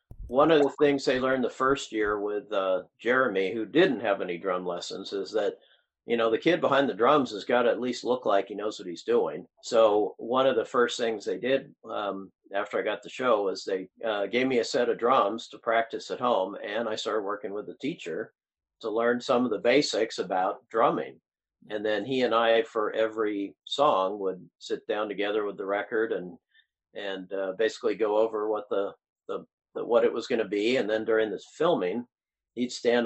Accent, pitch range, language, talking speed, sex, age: American, 105-155 Hz, English, 215 wpm, male, 50-69